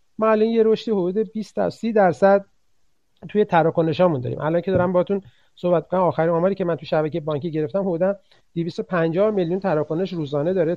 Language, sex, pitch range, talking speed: Persian, male, 160-200 Hz, 175 wpm